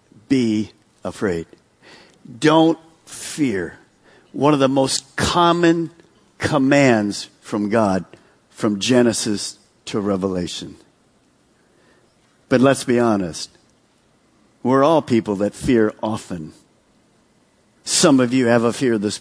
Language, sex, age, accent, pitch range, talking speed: English, male, 50-69, American, 110-175 Hz, 105 wpm